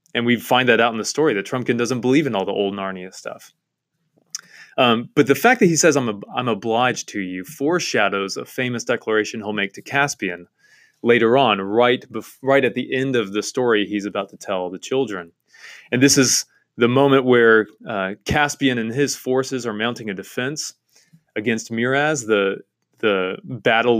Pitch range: 100-125 Hz